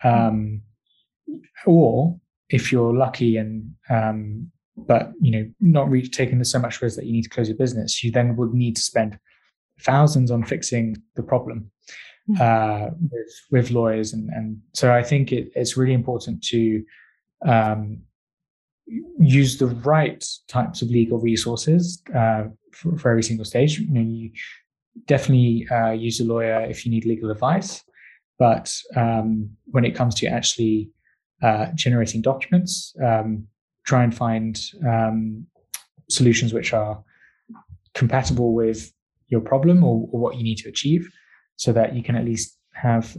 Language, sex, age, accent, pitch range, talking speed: English, male, 20-39, British, 110-130 Hz, 155 wpm